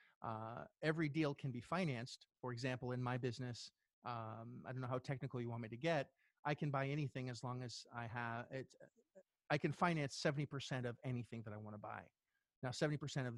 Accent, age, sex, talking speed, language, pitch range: American, 30-49, male, 205 wpm, English, 120-145 Hz